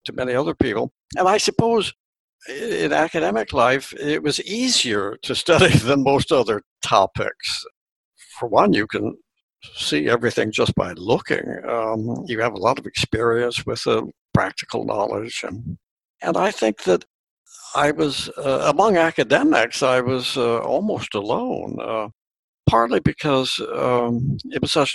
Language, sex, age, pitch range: English, male, 70-89, 110-135 Hz